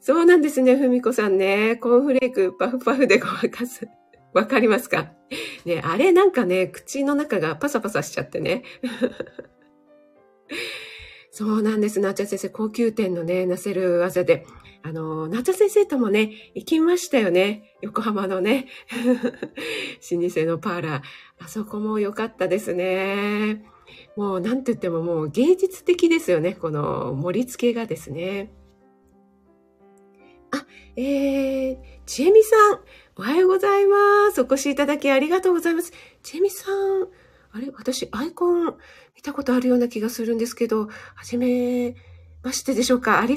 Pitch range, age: 190-275 Hz, 40-59